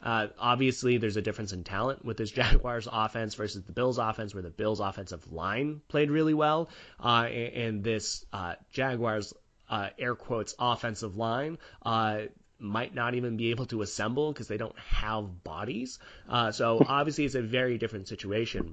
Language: English